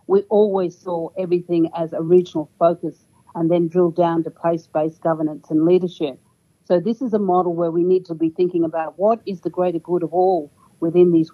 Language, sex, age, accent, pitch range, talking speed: English, female, 50-69, Australian, 160-185 Hz, 200 wpm